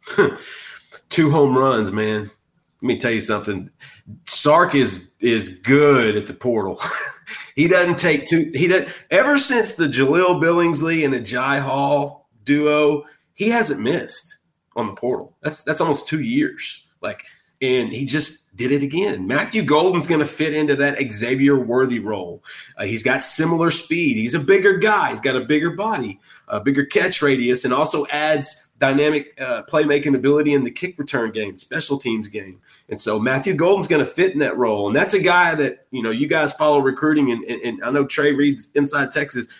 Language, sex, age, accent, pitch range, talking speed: English, male, 30-49, American, 135-165 Hz, 185 wpm